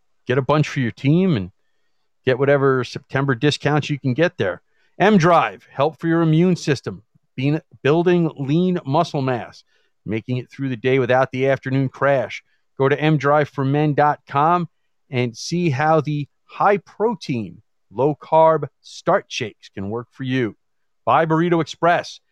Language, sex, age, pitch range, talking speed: English, male, 40-59, 125-165 Hz, 140 wpm